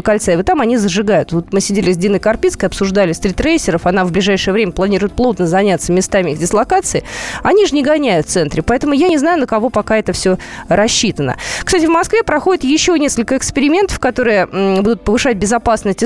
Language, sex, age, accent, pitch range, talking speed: Russian, female, 20-39, native, 190-255 Hz, 185 wpm